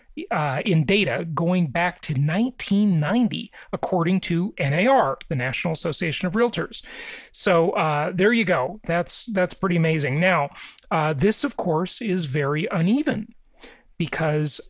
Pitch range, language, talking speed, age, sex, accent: 155-205 Hz, English, 135 wpm, 40-59, male, American